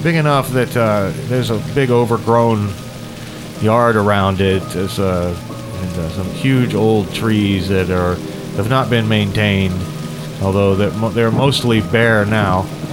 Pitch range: 95-115 Hz